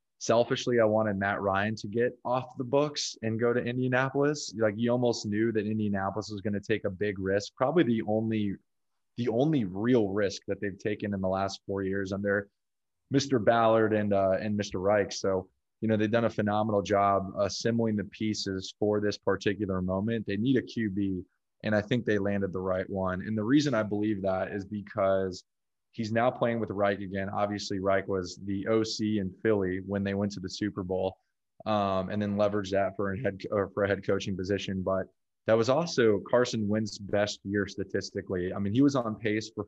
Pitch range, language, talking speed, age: 100-110 Hz, English, 205 wpm, 20-39